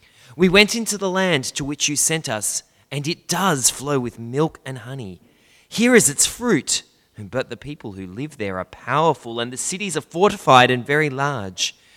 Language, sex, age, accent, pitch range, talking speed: English, male, 20-39, Australian, 105-145 Hz, 190 wpm